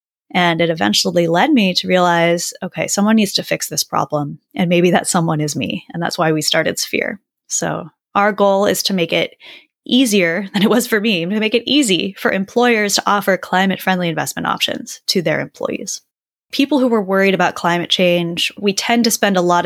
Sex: female